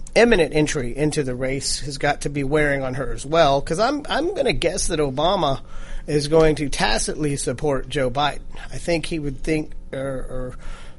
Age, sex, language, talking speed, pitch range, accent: 40-59, male, English, 190 wpm, 140-170 Hz, American